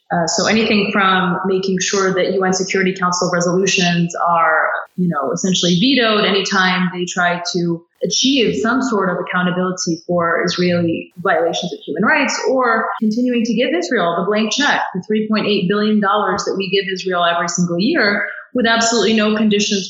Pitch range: 180-220 Hz